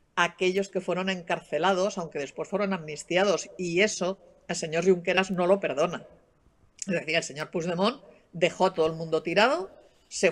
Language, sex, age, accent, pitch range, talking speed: Spanish, female, 50-69, Spanish, 170-195 Hz, 165 wpm